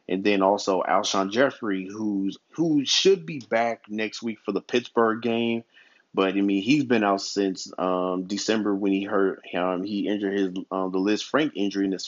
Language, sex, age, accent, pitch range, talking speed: English, male, 30-49, American, 95-110 Hz, 195 wpm